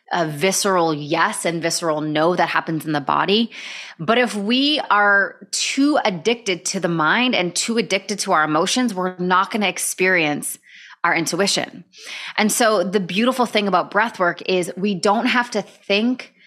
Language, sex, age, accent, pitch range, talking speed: English, female, 20-39, American, 170-225 Hz, 170 wpm